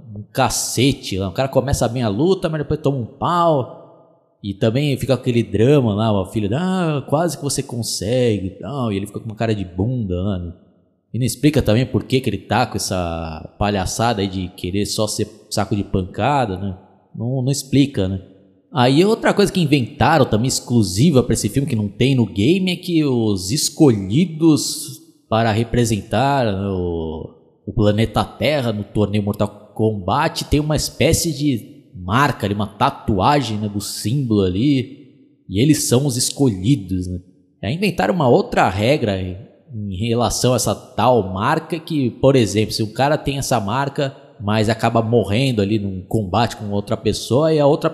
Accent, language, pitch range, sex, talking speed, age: Brazilian, Portuguese, 105-140 Hz, male, 180 wpm, 20-39